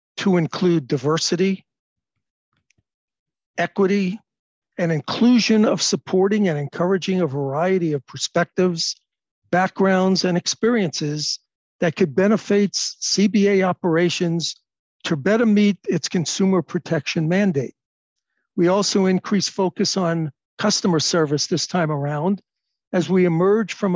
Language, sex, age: English, male, 60-79